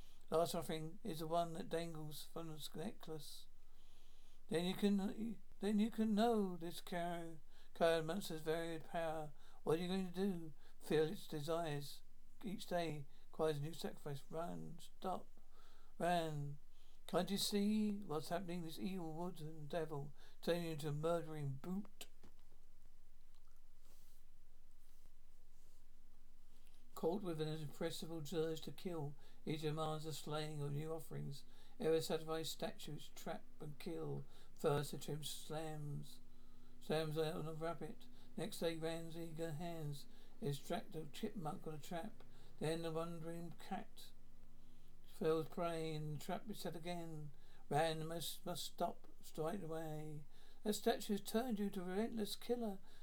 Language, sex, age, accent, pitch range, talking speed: English, male, 60-79, British, 145-175 Hz, 140 wpm